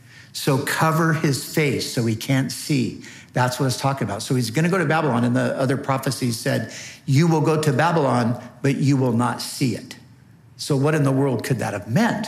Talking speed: 220 wpm